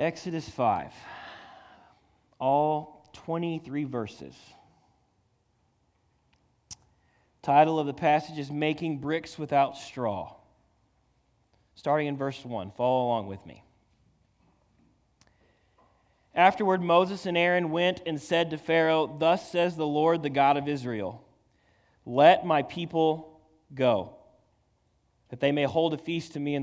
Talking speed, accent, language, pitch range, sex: 115 wpm, American, English, 135-170 Hz, male